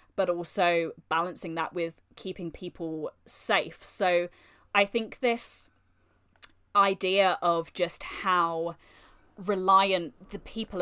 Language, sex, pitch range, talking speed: English, female, 170-210 Hz, 105 wpm